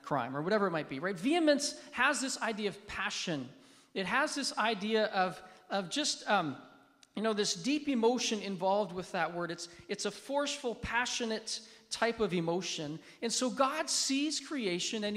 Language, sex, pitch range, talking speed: English, male, 185-250 Hz, 175 wpm